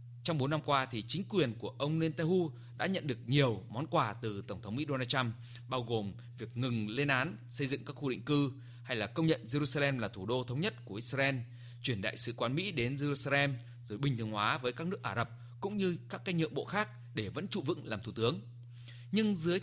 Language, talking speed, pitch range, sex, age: Vietnamese, 240 wpm, 120-155 Hz, male, 20-39